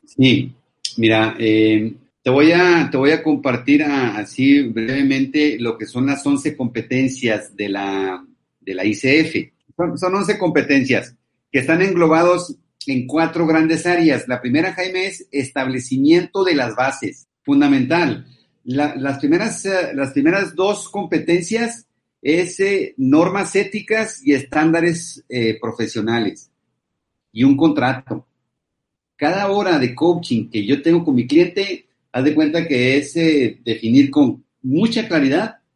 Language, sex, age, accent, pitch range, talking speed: Spanish, male, 50-69, Mexican, 125-170 Hz, 135 wpm